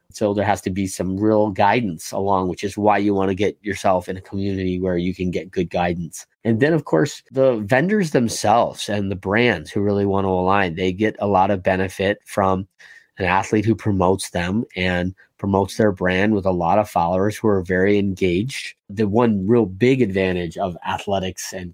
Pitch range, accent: 90-105 Hz, American